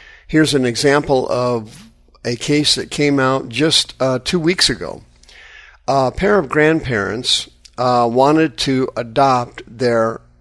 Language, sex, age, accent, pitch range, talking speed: English, male, 50-69, American, 120-135 Hz, 135 wpm